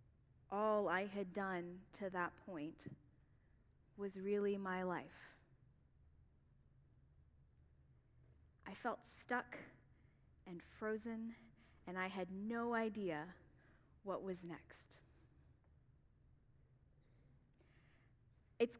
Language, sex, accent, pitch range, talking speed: English, female, American, 190-255 Hz, 80 wpm